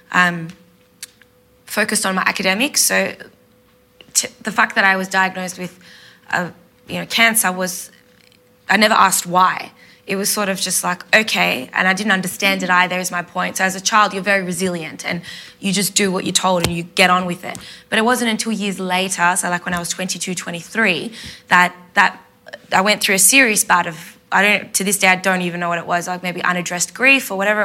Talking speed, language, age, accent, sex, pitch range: 215 wpm, English, 20-39, Australian, female, 180-210 Hz